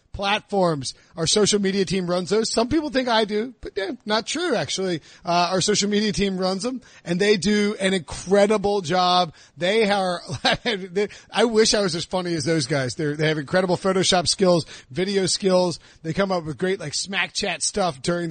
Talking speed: 195 wpm